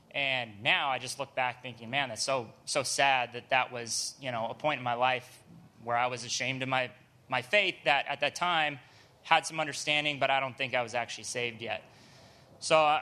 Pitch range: 125-155 Hz